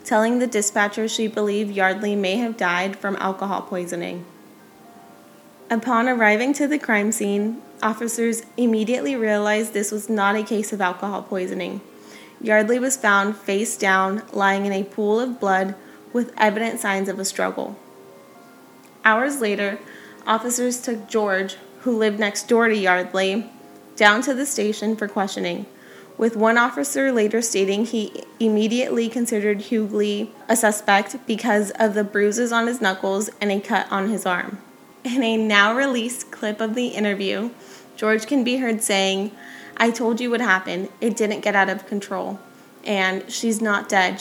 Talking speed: 155 wpm